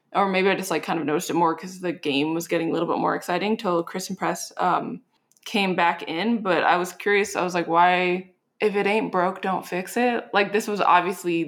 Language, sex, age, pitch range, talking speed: English, female, 20-39, 165-205 Hz, 245 wpm